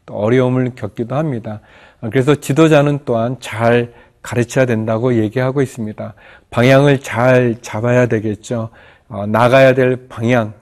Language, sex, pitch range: Korean, male, 115-135 Hz